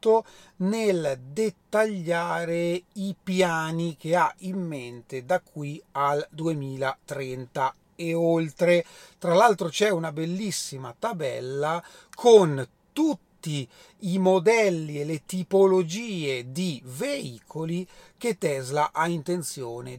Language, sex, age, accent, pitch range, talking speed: Italian, male, 40-59, native, 145-195 Hz, 100 wpm